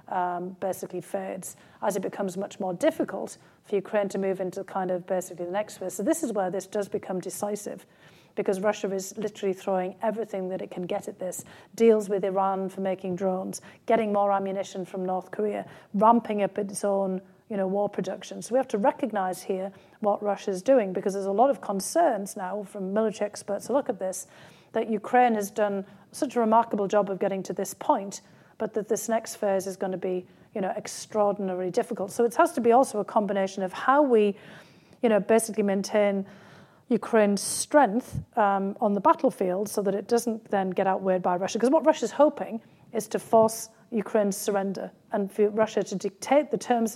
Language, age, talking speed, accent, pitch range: English, 40-59, 200 wpm, British, 190-220 Hz